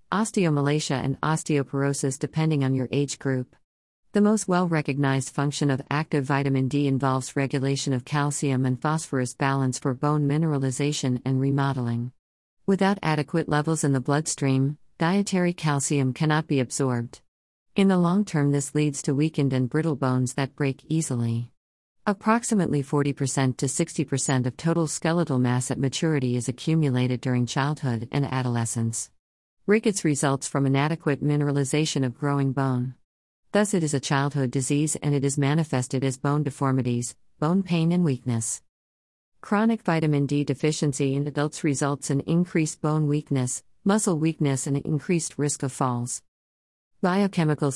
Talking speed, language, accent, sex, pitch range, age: 140 wpm, English, American, female, 130-155 Hz, 50-69